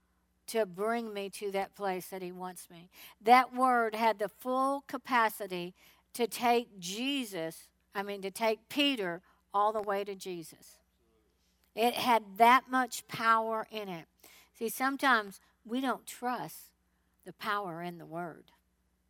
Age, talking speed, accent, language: 50-69, 145 wpm, American, English